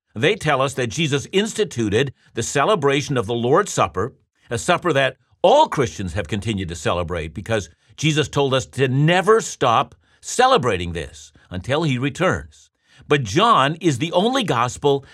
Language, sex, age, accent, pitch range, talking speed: English, male, 60-79, American, 110-165 Hz, 155 wpm